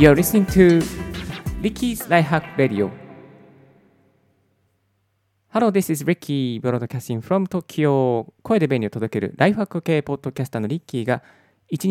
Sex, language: male, Japanese